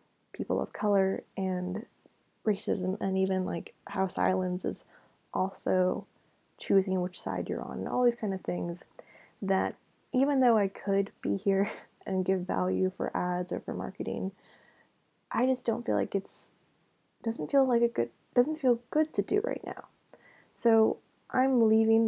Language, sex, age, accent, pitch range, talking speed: English, female, 20-39, American, 185-215 Hz, 160 wpm